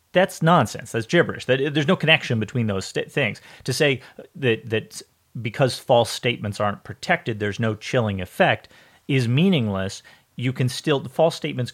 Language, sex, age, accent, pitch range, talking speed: English, male, 30-49, American, 115-155 Hz, 165 wpm